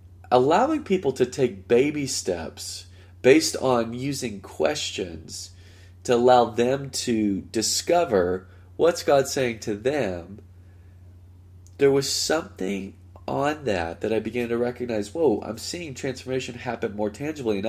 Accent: American